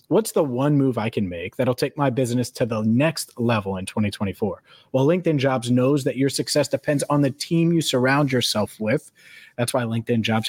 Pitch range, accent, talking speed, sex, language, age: 115-140 Hz, American, 205 wpm, male, English, 30-49